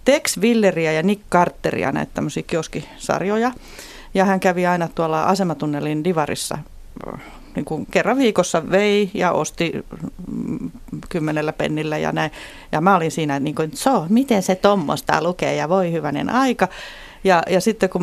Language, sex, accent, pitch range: Finnish, female, native, 150-190 Hz